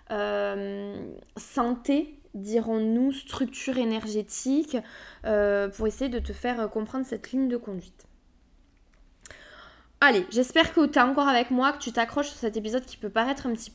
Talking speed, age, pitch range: 155 wpm, 20-39, 210-255 Hz